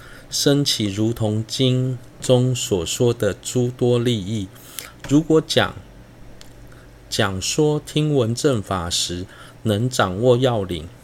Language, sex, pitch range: Chinese, male, 100-135 Hz